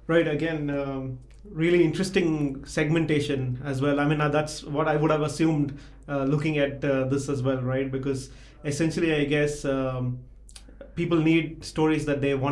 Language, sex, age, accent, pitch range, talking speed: English, male, 30-49, Indian, 135-155 Hz, 170 wpm